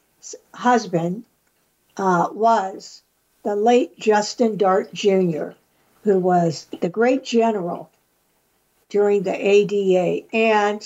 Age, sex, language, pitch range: 60-79, female, English, 195-255 Hz